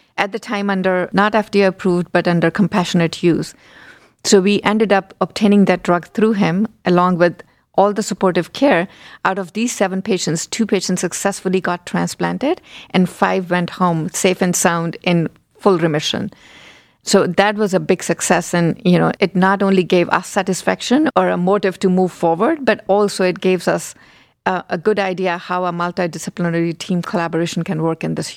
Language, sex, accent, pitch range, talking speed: English, female, Indian, 175-205 Hz, 180 wpm